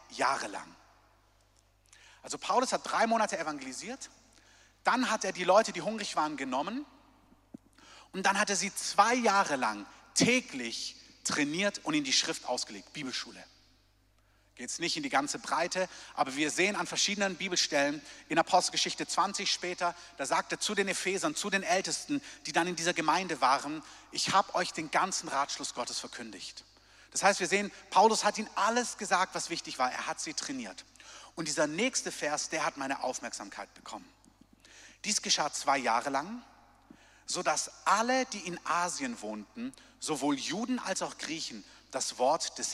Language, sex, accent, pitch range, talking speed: German, male, German, 150-210 Hz, 160 wpm